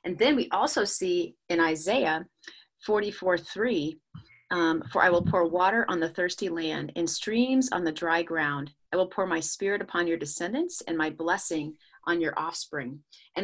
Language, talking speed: English, 170 wpm